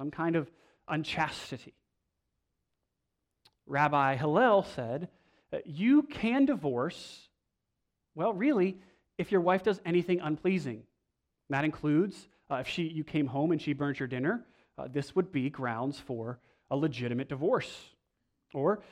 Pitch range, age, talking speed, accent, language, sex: 140-185 Hz, 30-49, 125 wpm, American, English, male